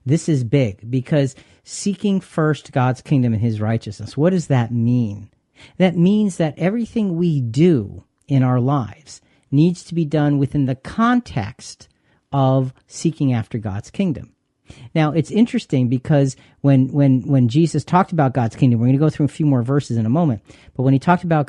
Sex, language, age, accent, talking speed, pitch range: male, English, 40-59, American, 180 wpm, 130-175 Hz